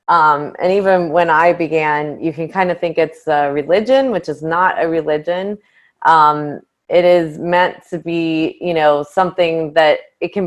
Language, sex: English, female